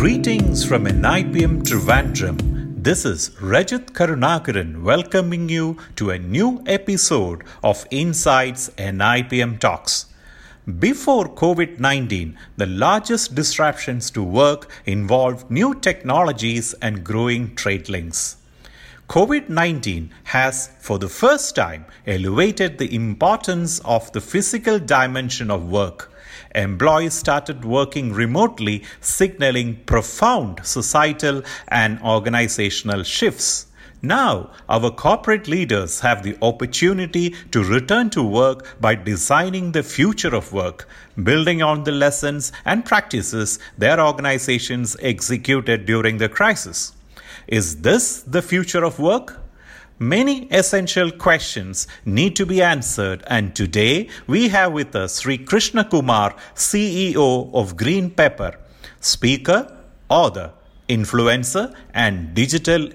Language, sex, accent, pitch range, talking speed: English, male, Indian, 110-170 Hz, 110 wpm